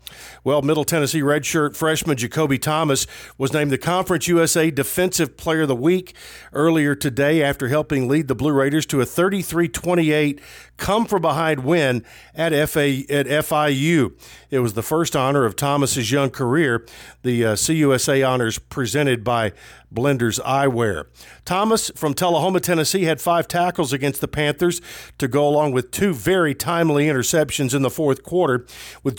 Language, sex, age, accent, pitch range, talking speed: English, male, 50-69, American, 135-165 Hz, 145 wpm